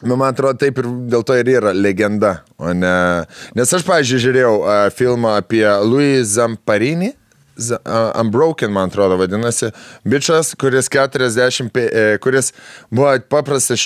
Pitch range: 110-140 Hz